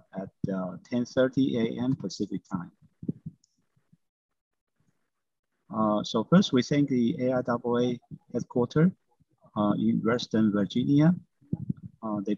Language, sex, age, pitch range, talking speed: English, male, 50-69, 100-140 Hz, 95 wpm